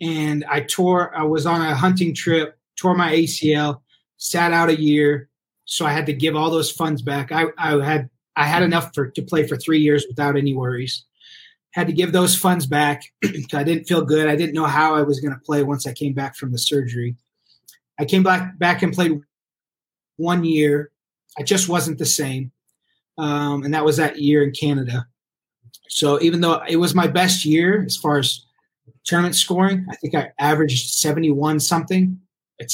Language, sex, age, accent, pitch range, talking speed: English, male, 30-49, American, 140-165 Hz, 200 wpm